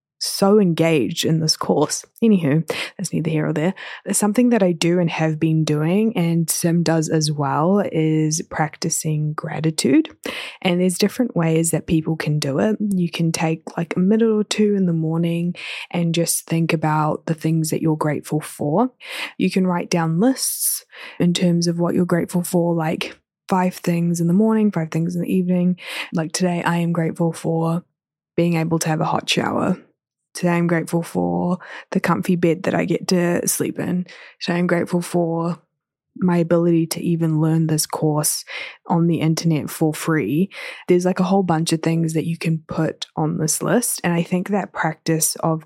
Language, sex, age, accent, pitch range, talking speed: English, female, 20-39, Australian, 160-180 Hz, 185 wpm